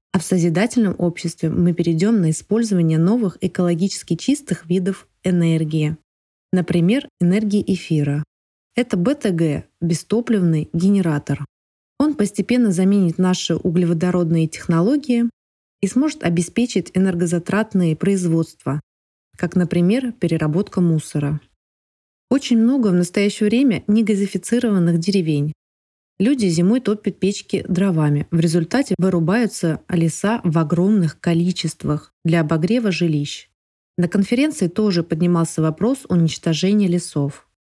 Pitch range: 165-200 Hz